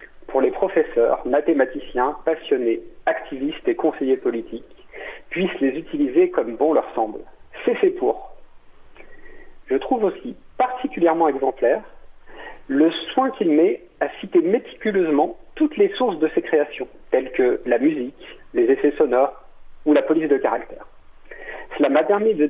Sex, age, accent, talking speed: male, 50-69, French, 140 wpm